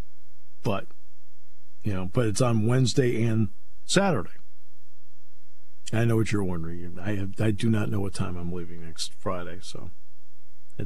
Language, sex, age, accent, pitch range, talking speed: English, male, 50-69, American, 90-115 Hz, 155 wpm